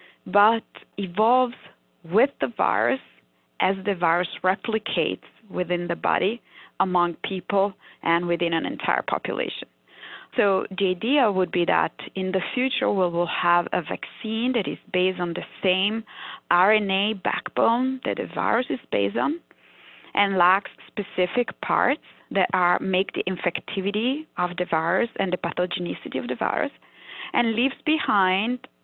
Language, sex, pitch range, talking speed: English, female, 180-225 Hz, 140 wpm